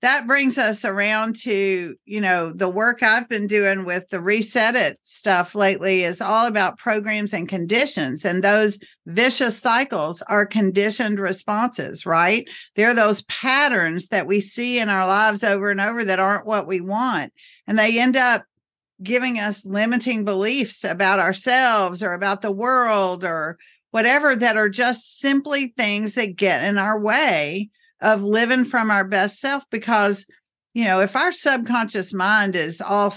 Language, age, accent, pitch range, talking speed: English, 50-69, American, 195-230 Hz, 165 wpm